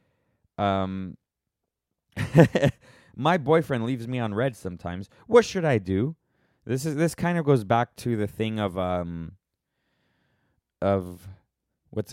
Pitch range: 95-135 Hz